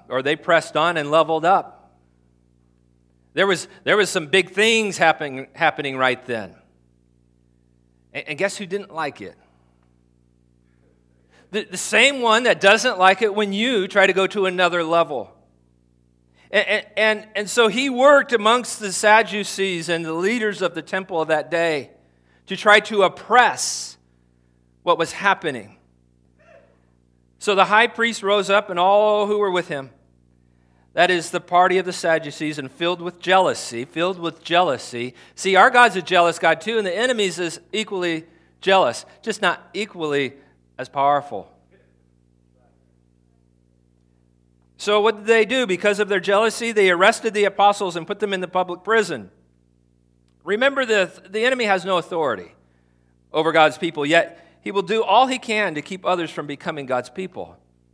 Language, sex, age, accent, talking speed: English, male, 40-59, American, 160 wpm